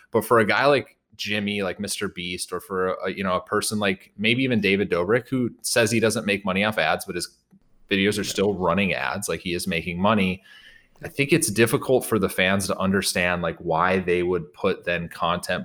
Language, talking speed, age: English, 220 wpm, 30-49